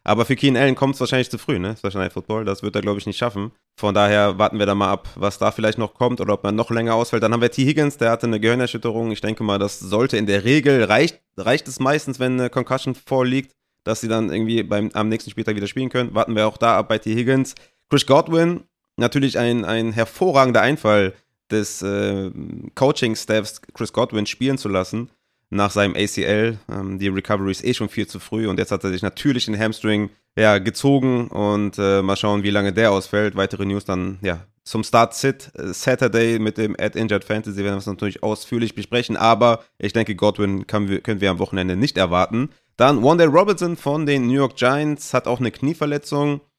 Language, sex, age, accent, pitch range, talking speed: German, male, 30-49, German, 105-125 Hz, 210 wpm